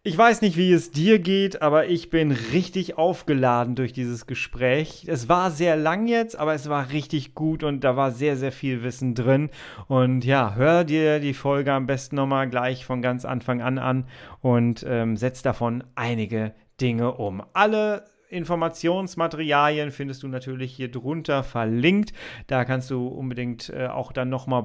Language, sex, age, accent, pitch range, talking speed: German, male, 40-59, German, 125-160 Hz, 175 wpm